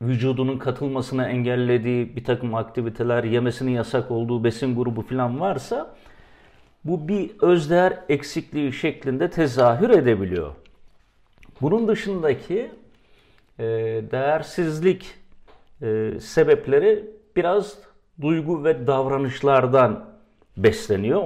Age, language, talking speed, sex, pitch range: 50-69, Turkish, 90 wpm, male, 125-160 Hz